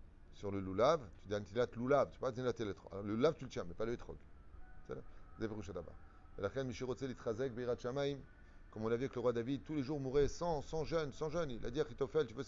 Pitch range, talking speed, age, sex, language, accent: 100-135 Hz, 245 wpm, 30-49, male, French, French